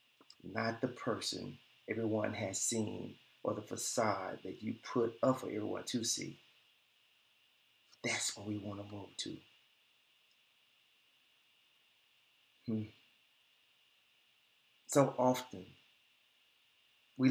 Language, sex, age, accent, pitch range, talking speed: English, male, 40-59, American, 110-140 Hz, 95 wpm